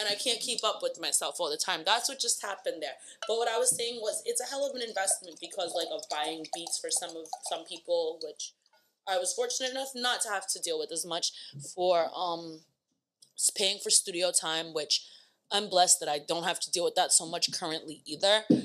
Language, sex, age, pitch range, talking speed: English, female, 20-39, 155-205 Hz, 230 wpm